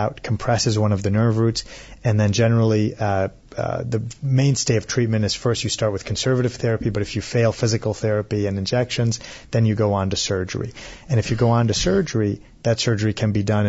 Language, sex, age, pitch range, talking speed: English, male, 30-49, 105-125 Hz, 210 wpm